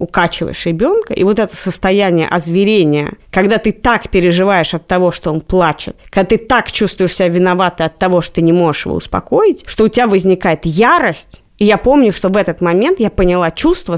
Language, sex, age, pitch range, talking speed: Russian, female, 20-39, 175-225 Hz, 195 wpm